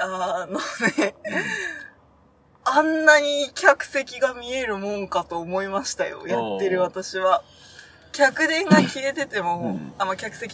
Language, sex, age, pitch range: Japanese, female, 20-39, 180-270 Hz